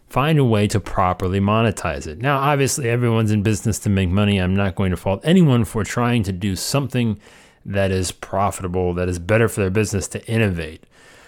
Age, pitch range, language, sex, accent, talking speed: 30-49, 95-120 Hz, English, male, American, 195 wpm